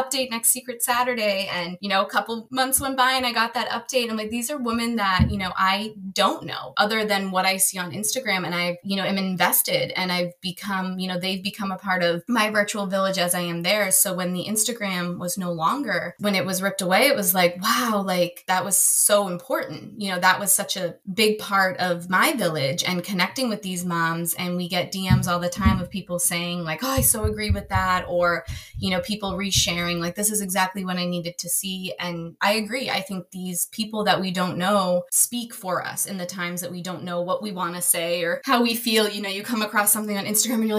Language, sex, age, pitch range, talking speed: English, female, 20-39, 175-210 Hz, 245 wpm